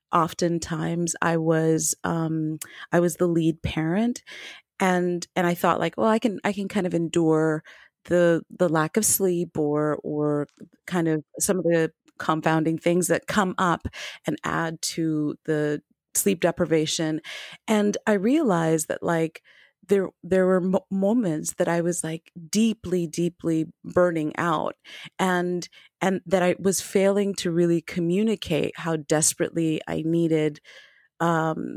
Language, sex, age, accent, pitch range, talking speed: English, female, 30-49, American, 160-195 Hz, 145 wpm